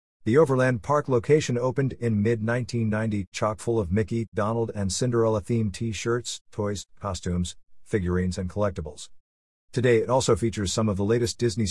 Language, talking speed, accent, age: English, 145 wpm, American, 50-69